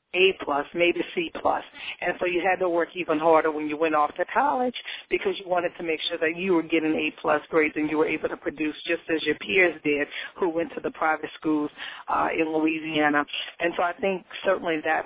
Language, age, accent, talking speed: English, 40-59, American, 220 wpm